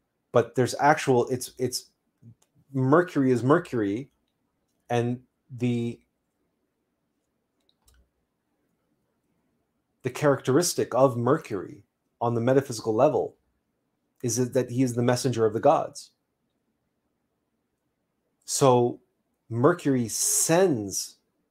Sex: male